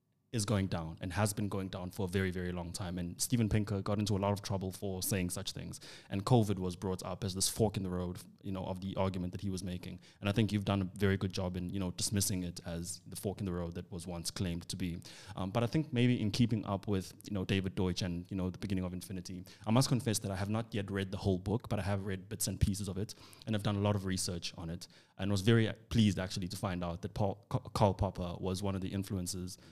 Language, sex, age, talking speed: English, male, 20-39, 285 wpm